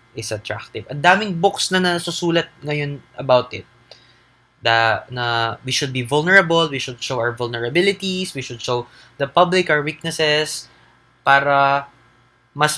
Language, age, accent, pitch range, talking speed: English, 20-39, Filipino, 120-160 Hz, 145 wpm